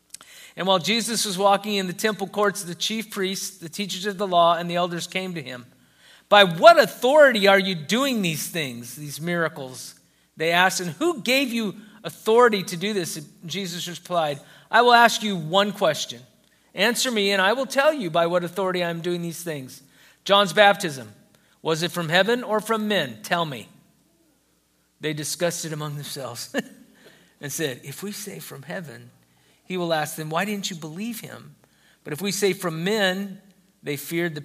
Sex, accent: male, American